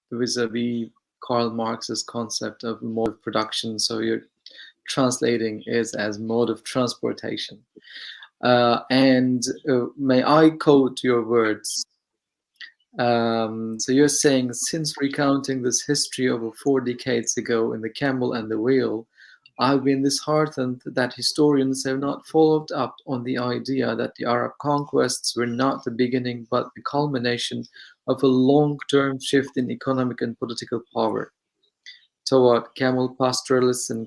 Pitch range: 120-145 Hz